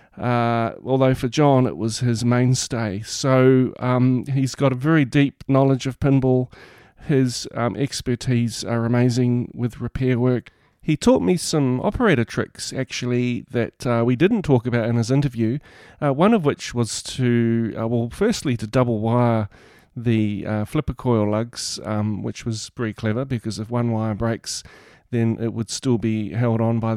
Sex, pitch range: male, 115-130 Hz